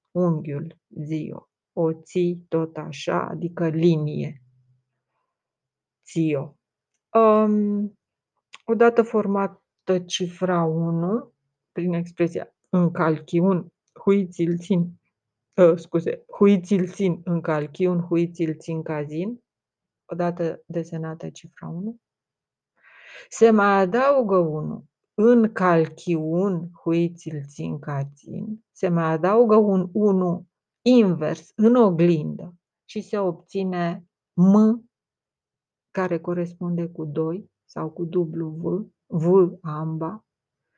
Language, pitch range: Romanian, 165-200 Hz